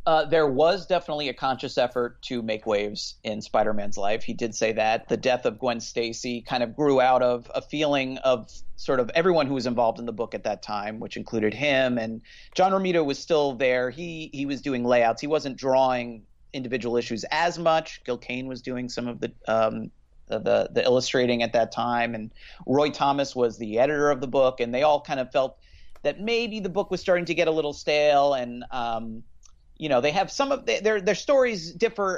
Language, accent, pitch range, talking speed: English, American, 110-145 Hz, 215 wpm